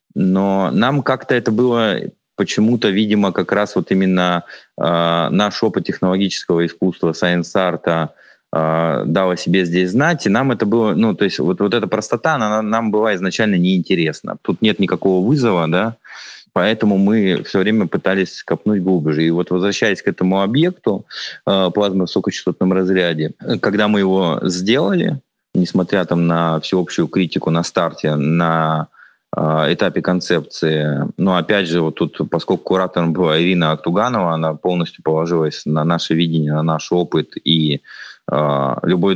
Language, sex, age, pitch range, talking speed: Russian, male, 20-39, 80-95 Hz, 145 wpm